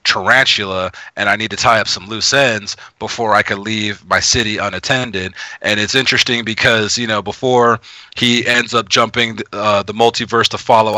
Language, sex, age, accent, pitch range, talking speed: English, male, 30-49, American, 105-120 Hz, 180 wpm